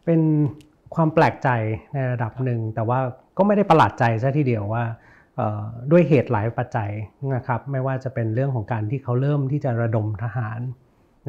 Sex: male